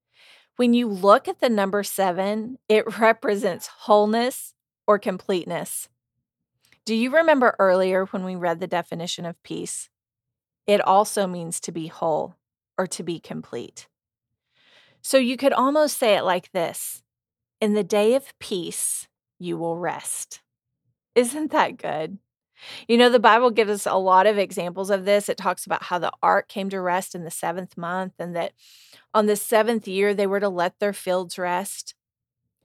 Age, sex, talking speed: 30-49, female, 165 wpm